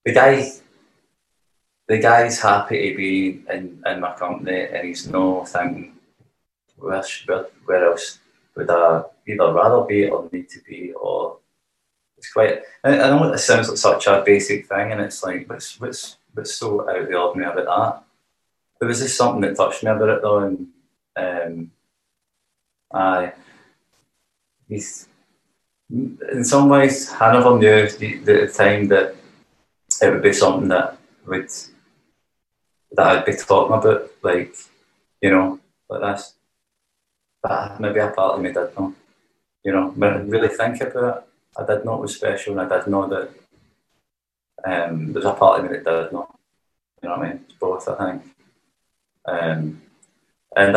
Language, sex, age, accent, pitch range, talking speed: English, male, 20-39, British, 95-135 Hz, 165 wpm